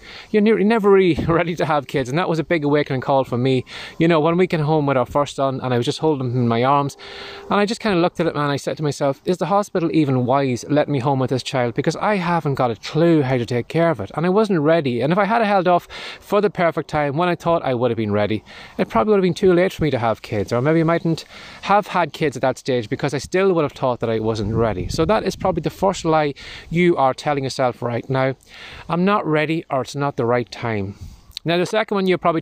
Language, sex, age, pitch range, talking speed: English, male, 20-39, 125-165 Hz, 285 wpm